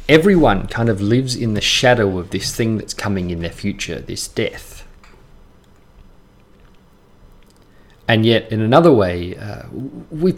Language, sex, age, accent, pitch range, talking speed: English, male, 30-49, Australian, 95-125 Hz, 140 wpm